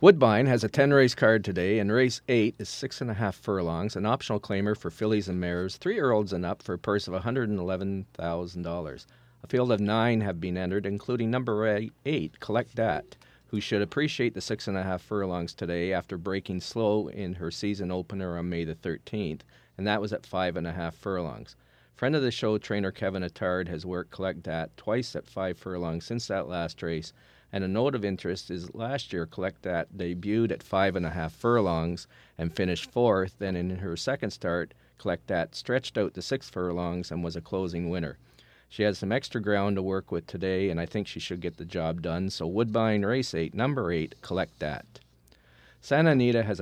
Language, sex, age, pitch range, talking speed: English, male, 40-59, 90-110 Hz, 195 wpm